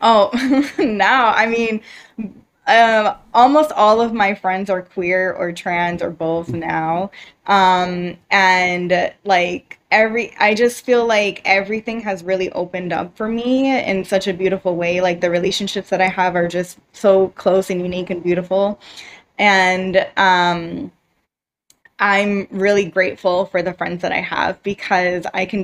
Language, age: English, 20-39